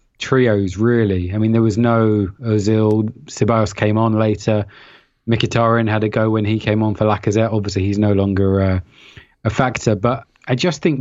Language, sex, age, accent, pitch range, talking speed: English, male, 20-39, British, 105-125 Hz, 180 wpm